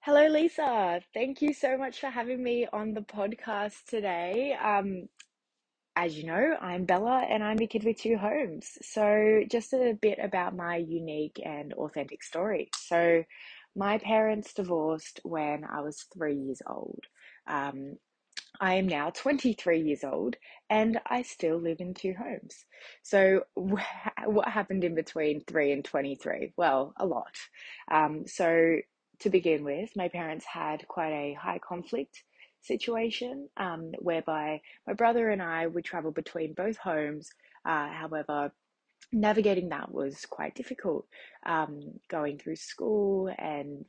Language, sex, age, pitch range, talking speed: English, female, 20-39, 155-215 Hz, 145 wpm